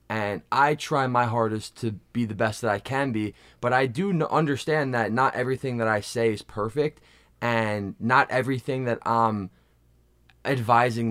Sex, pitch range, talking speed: male, 110-130 Hz, 165 wpm